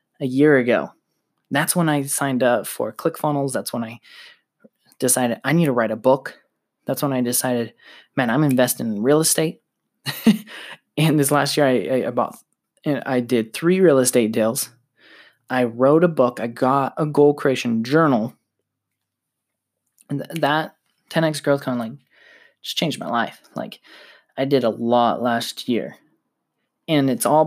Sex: male